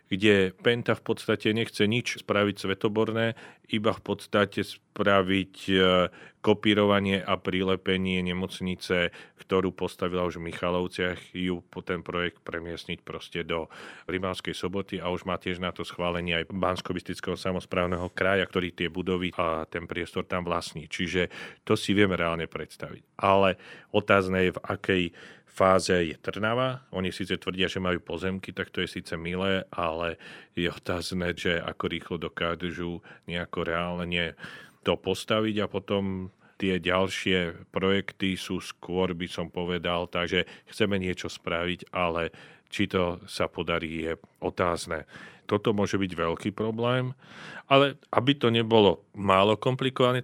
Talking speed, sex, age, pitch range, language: 140 wpm, male, 40-59, 90-100 Hz, Slovak